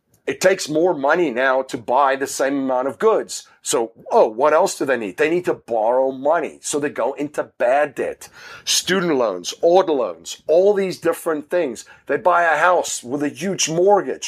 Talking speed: 195 wpm